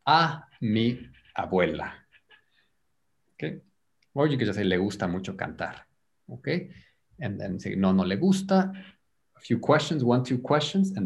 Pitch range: 100-150 Hz